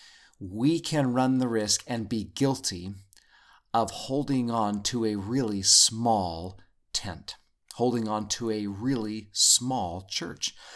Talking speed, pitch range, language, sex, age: 130 wpm, 110-150 Hz, English, male, 30-49